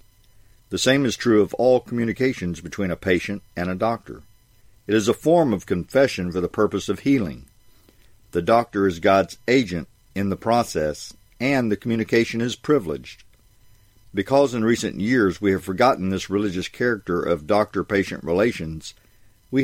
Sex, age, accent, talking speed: male, 50-69, American, 155 wpm